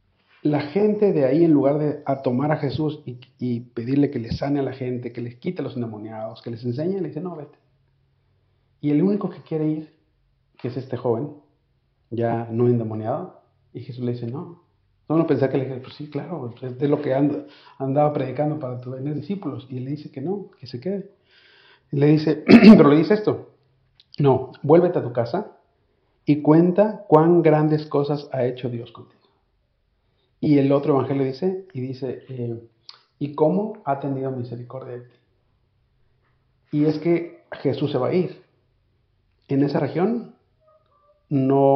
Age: 50-69